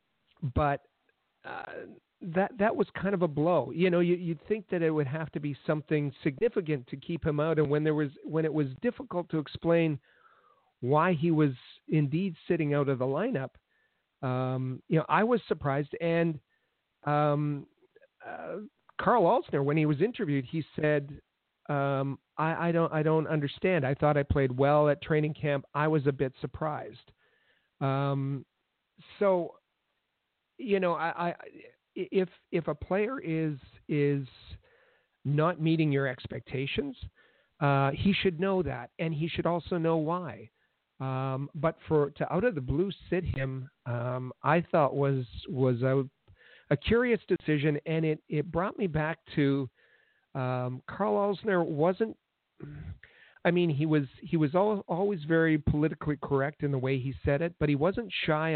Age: 50-69